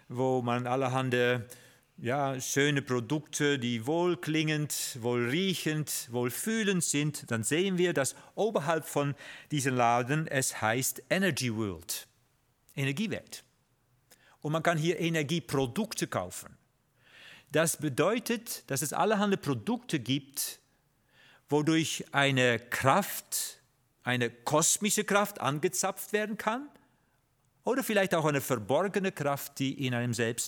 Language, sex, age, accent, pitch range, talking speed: German, male, 50-69, German, 130-180 Hz, 110 wpm